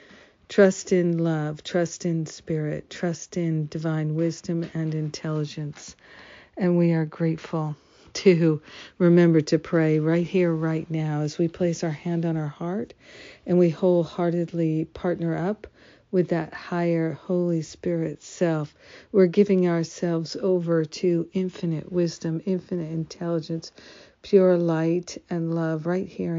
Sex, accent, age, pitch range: female, American, 50-69, 160-180 Hz